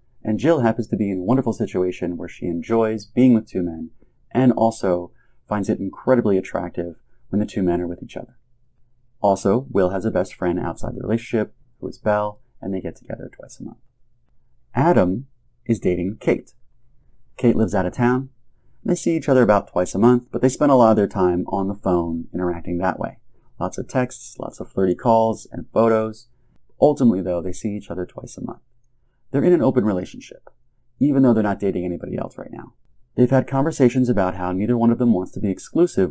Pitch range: 95-125 Hz